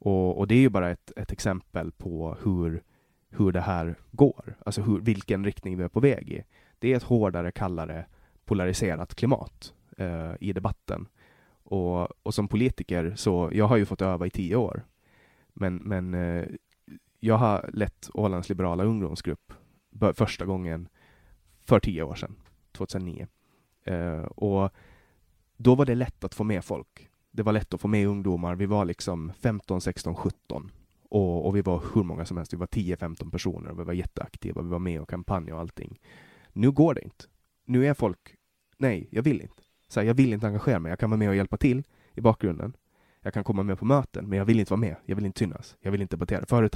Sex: male